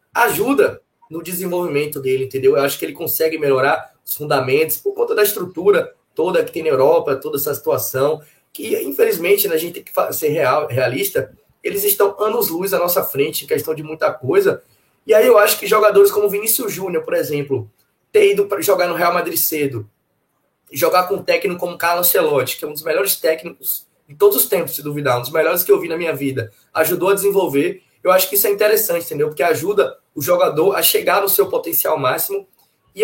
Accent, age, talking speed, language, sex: Brazilian, 20-39, 205 wpm, Portuguese, male